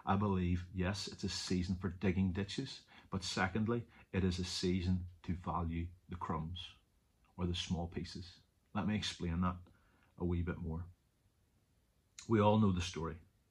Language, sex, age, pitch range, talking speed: English, male, 30-49, 90-105 Hz, 160 wpm